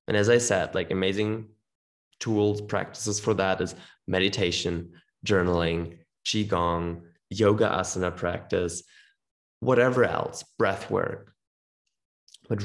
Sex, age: male, 20-39